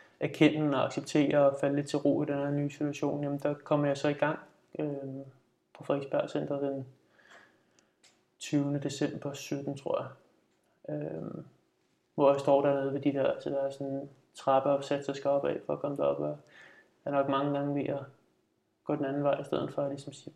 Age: 20-39